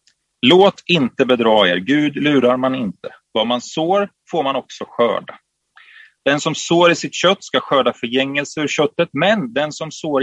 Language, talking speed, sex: Swedish, 175 wpm, male